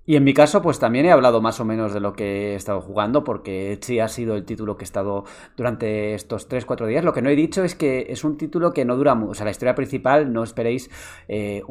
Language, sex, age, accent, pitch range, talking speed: Spanish, male, 20-39, Spanish, 105-130 Hz, 265 wpm